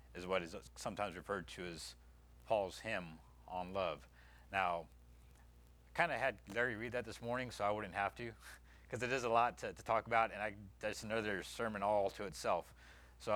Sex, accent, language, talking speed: male, American, English, 200 wpm